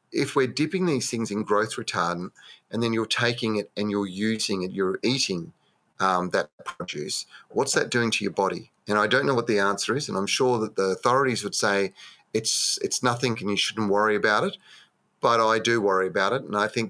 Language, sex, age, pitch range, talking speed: English, male, 30-49, 105-125 Hz, 220 wpm